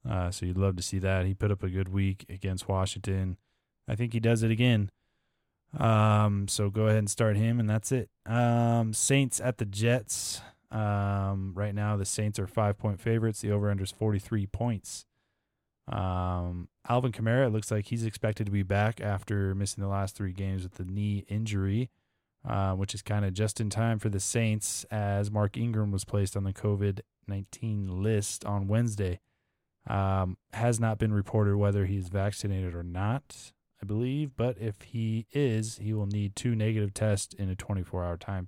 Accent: American